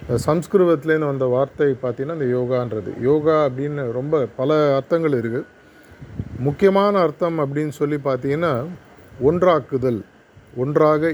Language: Tamil